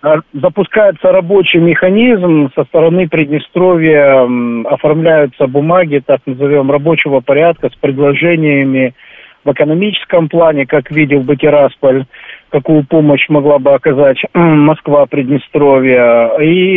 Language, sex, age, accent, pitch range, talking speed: Russian, male, 50-69, native, 130-165 Hz, 95 wpm